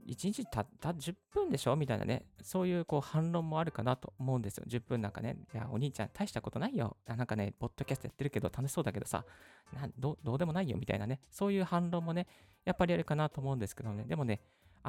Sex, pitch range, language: male, 110-140 Hz, Japanese